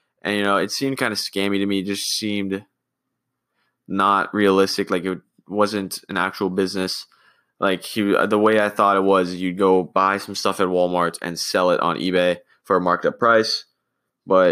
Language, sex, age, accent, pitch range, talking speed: English, male, 20-39, American, 95-105 Hz, 195 wpm